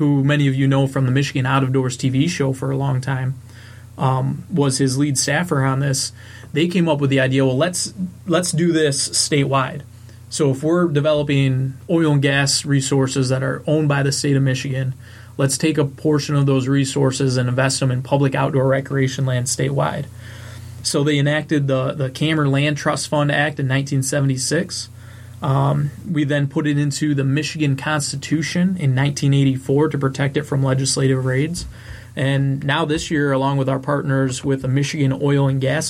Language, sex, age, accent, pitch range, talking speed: English, male, 20-39, American, 130-150 Hz, 185 wpm